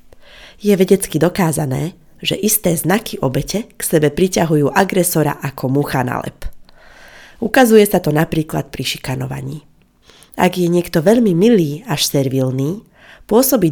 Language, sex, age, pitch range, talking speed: Slovak, female, 30-49, 145-190 Hz, 125 wpm